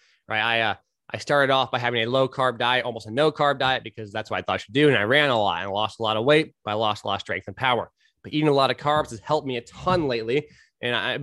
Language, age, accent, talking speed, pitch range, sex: English, 20-39, American, 305 wpm, 110-135 Hz, male